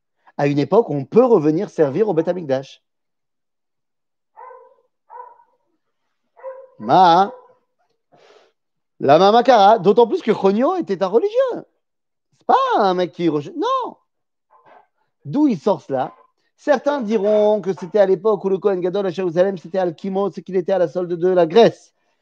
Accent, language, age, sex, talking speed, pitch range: French, French, 40-59, male, 150 wpm, 160-265 Hz